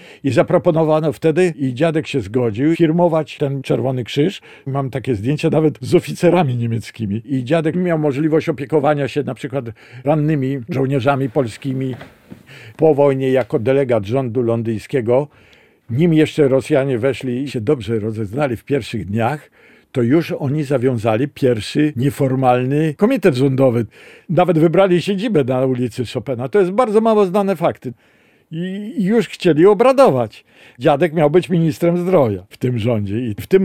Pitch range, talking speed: 125-170 Hz, 145 wpm